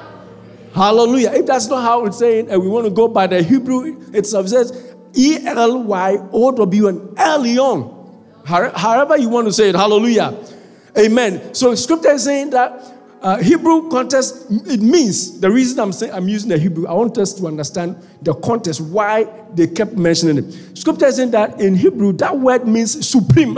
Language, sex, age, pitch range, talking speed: English, male, 50-69, 200-260 Hz, 175 wpm